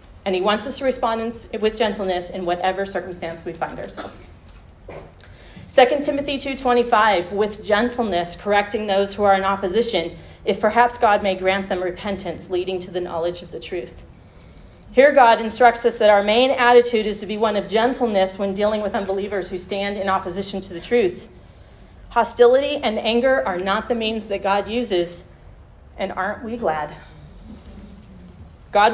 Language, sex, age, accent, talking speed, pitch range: English, female, 40-59, American, 165 wpm, 175-220 Hz